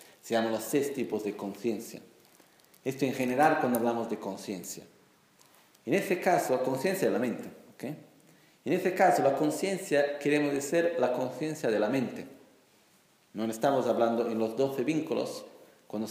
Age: 40-59